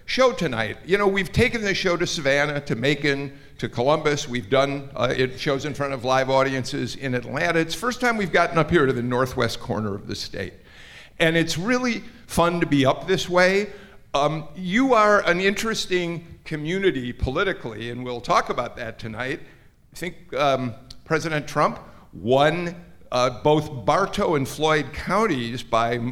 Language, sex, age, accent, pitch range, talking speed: English, male, 50-69, American, 125-175 Hz, 175 wpm